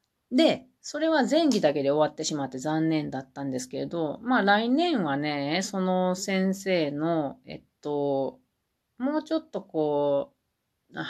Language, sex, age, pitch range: Japanese, female, 40-59, 145-190 Hz